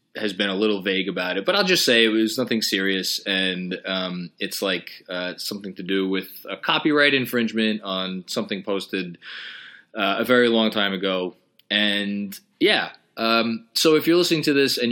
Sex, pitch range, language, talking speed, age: male, 100-120 Hz, English, 185 wpm, 20-39